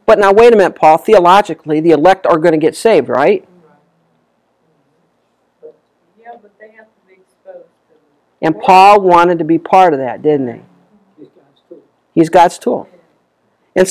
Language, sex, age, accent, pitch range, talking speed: English, male, 50-69, American, 160-205 Hz, 125 wpm